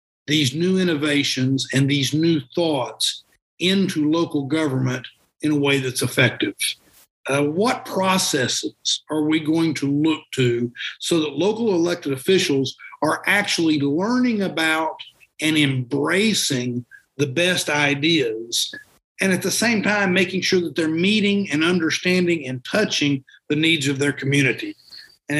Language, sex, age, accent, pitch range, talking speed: English, male, 50-69, American, 145-190 Hz, 135 wpm